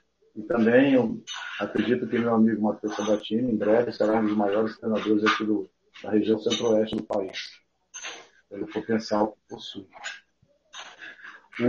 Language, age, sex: Portuguese, 40-59, male